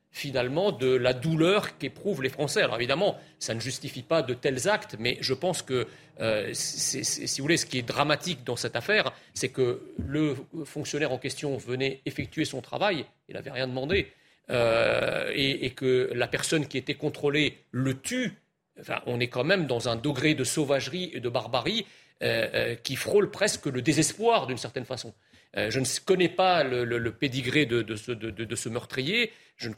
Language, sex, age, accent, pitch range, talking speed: French, male, 40-59, French, 125-160 Hz, 195 wpm